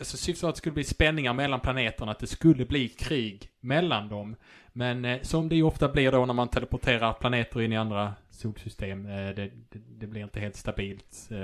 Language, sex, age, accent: English, male, 20-39, Norwegian